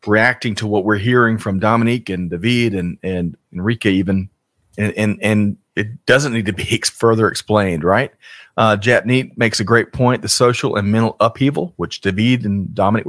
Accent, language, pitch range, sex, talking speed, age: American, English, 100-120 Hz, male, 185 wpm, 40-59